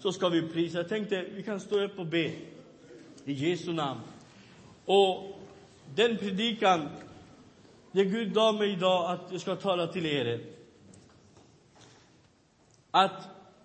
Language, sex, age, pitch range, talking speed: Swedish, male, 50-69, 165-215 Hz, 130 wpm